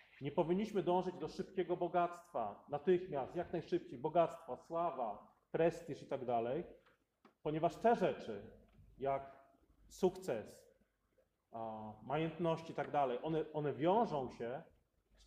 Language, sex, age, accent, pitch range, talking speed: Polish, male, 40-59, native, 140-180 Hz, 115 wpm